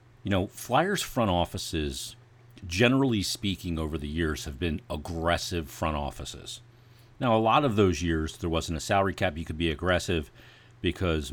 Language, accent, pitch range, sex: English, American, 85-120 Hz, male